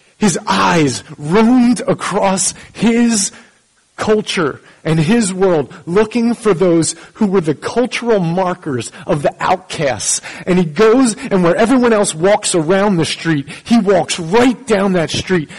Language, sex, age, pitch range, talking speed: English, male, 30-49, 170-225 Hz, 140 wpm